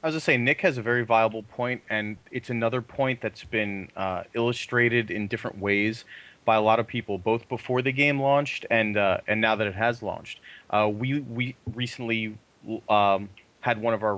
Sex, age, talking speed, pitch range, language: male, 30-49, 200 wpm, 110-125 Hz, English